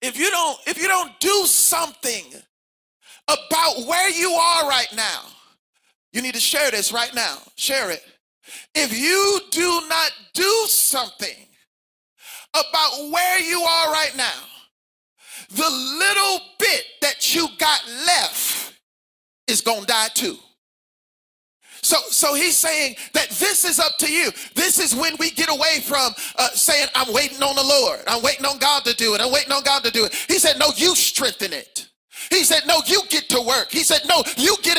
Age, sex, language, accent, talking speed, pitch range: 40-59, male, English, American, 175 wpm, 275-355 Hz